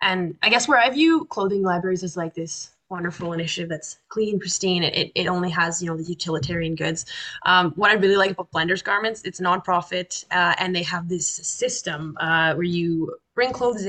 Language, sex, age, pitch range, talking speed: English, female, 20-39, 160-185 Hz, 195 wpm